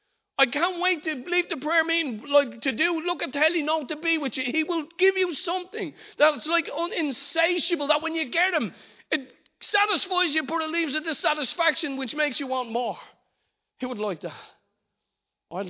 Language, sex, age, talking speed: English, male, 40-59, 195 wpm